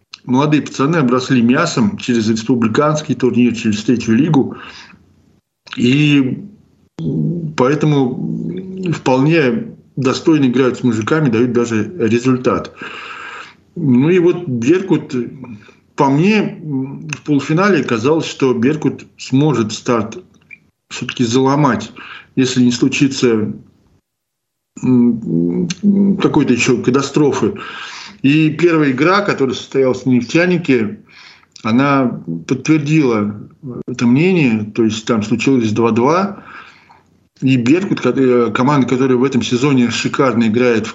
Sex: male